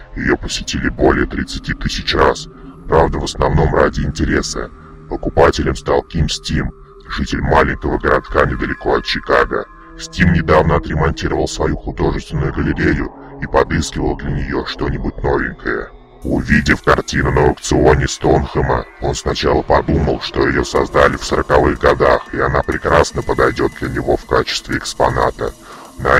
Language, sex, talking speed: Russian, female, 130 wpm